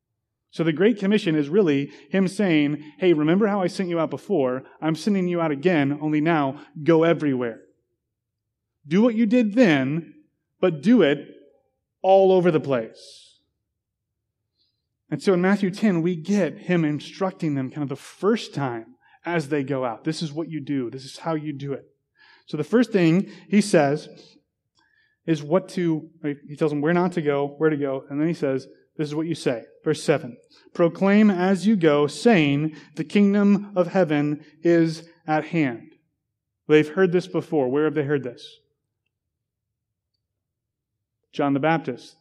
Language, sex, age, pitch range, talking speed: English, male, 30-49, 140-185 Hz, 170 wpm